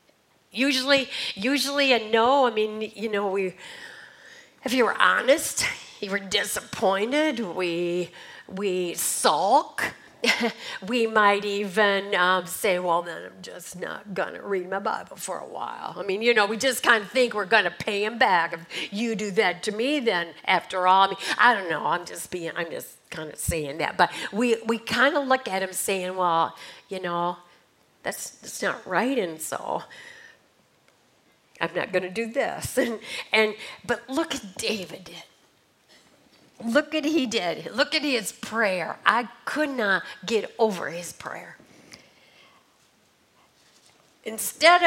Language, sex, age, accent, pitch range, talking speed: English, female, 50-69, American, 190-245 Hz, 155 wpm